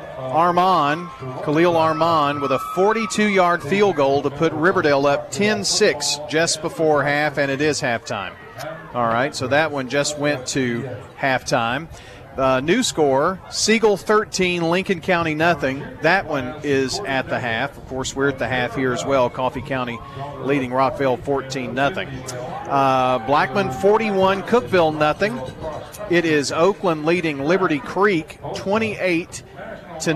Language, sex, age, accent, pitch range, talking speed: English, male, 40-59, American, 130-175 Hz, 150 wpm